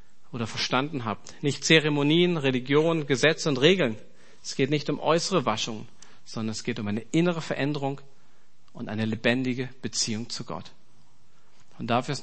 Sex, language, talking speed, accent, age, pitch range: male, German, 150 wpm, German, 40-59, 120-155 Hz